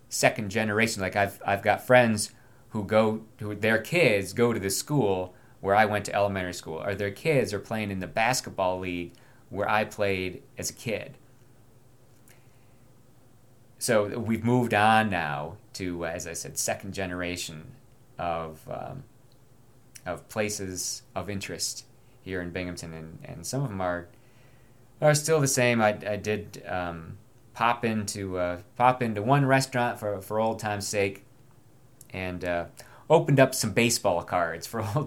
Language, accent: English, American